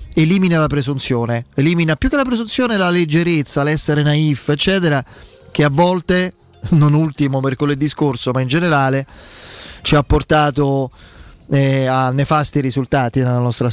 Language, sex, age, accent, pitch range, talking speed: Italian, male, 30-49, native, 135-175 Hz, 140 wpm